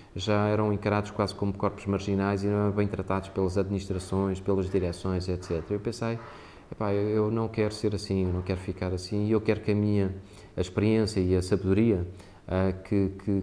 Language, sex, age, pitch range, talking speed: Portuguese, male, 20-39, 90-105 Hz, 190 wpm